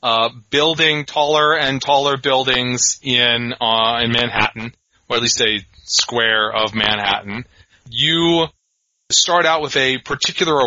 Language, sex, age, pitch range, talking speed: English, male, 30-49, 115-140 Hz, 130 wpm